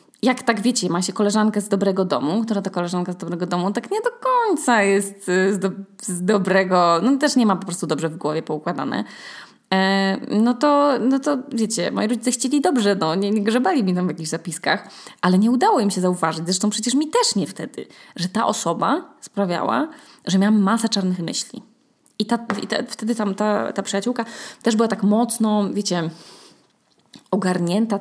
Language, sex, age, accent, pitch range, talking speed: Polish, female, 20-39, native, 185-235 Hz, 180 wpm